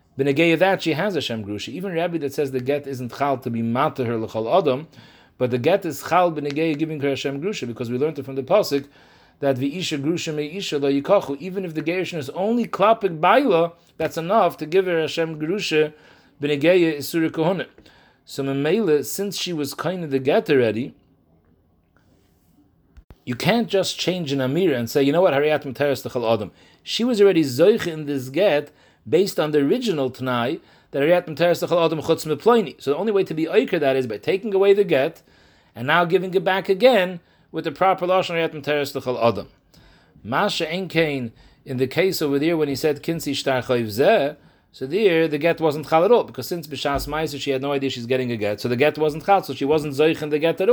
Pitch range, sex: 135-180 Hz, male